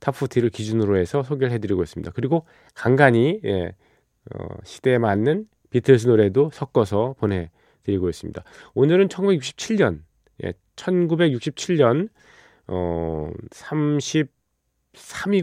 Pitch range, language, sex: 100-145 Hz, Korean, male